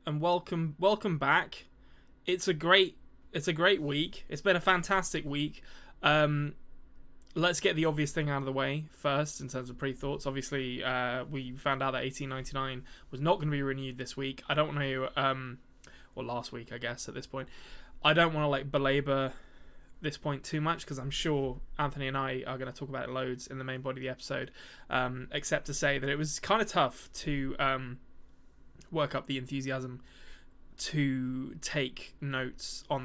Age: 20-39